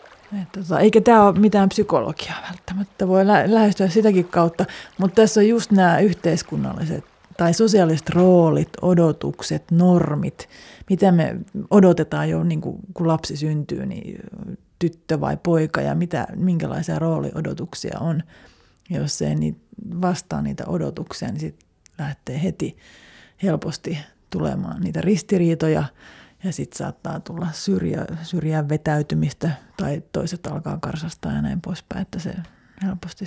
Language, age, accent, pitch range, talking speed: Finnish, 30-49, native, 160-195 Hz, 130 wpm